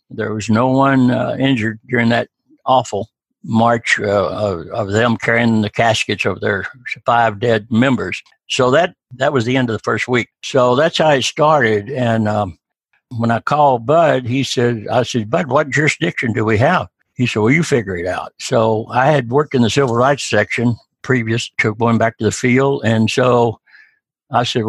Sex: male